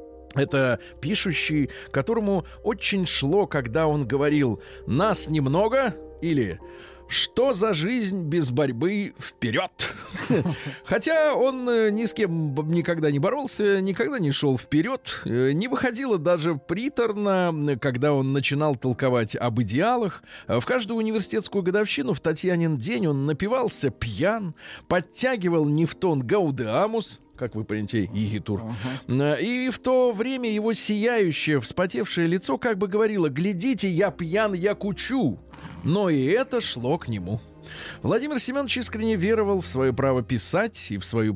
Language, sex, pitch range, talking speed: Russian, male, 125-205 Hz, 130 wpm